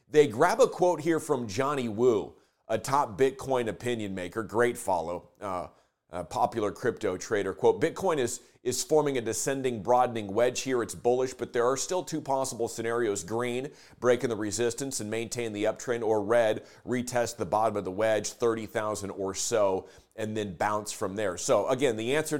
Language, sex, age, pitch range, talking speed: English, male, 30-49, 105-135 Hz, 180 wpm